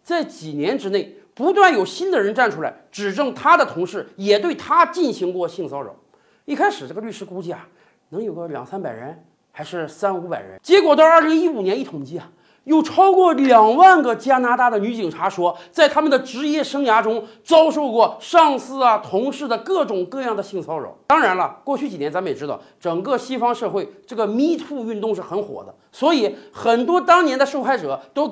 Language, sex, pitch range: Chinese, male, 210-315 Hz